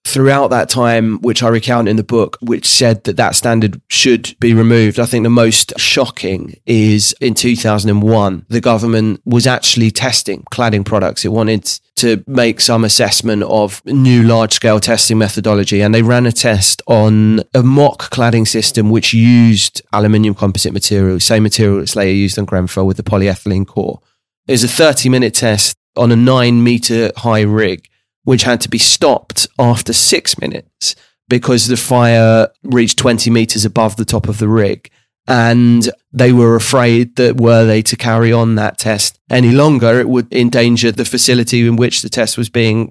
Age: 20-39